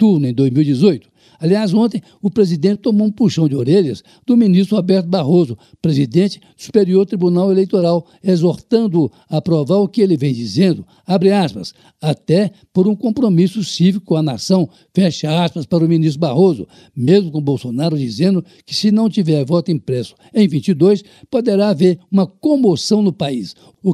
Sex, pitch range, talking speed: male, 155-195 Hz, 160 wpm